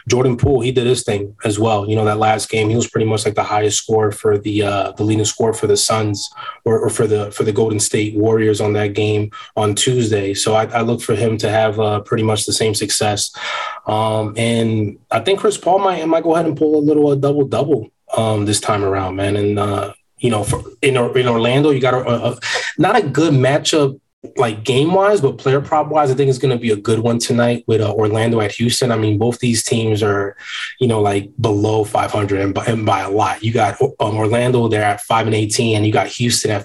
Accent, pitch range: American, 105-125 Hz